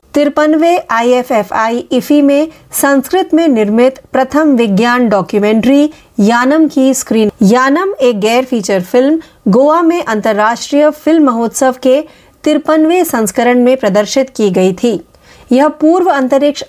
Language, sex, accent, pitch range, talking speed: Marathi, female, native, 215-290 Hz, 120 wpm